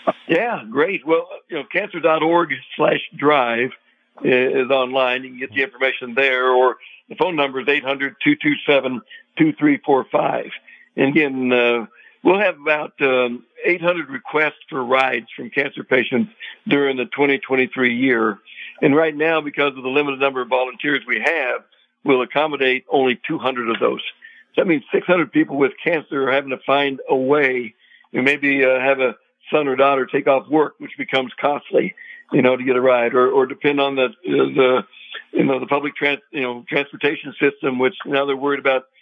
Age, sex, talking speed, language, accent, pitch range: 60-79, male, 175 wpm, English, American, 130-150 Hz